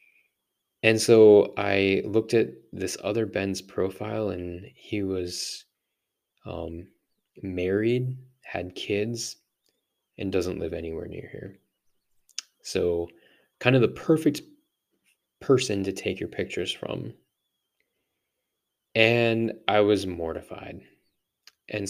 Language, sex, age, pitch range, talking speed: English, male, 20-39, 85-105 Hz, 105 wpm